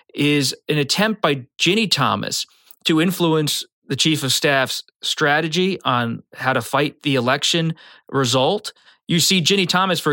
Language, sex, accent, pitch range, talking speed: English, male, American, 130-160 Hz, 150 wpm